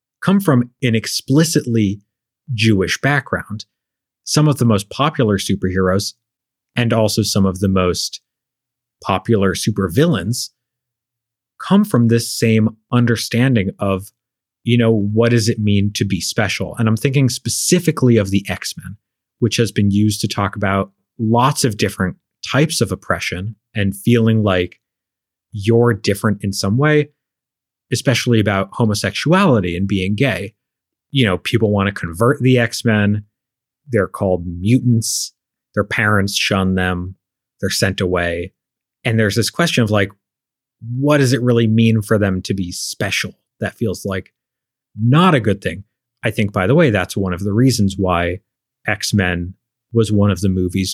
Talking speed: 150 wpm